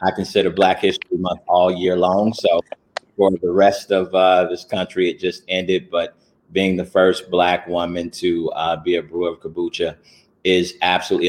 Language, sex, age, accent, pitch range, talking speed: English, male, 30-49, American, 90-105 Hz, 180 wpm